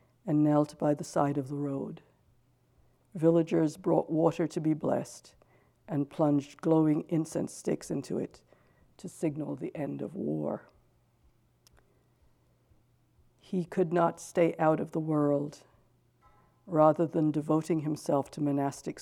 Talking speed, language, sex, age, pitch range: 130 wpm, English, female, 60-79, 145-165 Hz